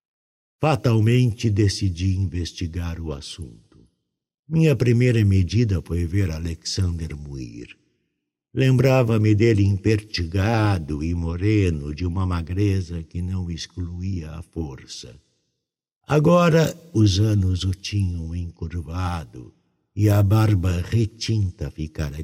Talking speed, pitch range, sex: 95 wpm, 85-110 Hz, male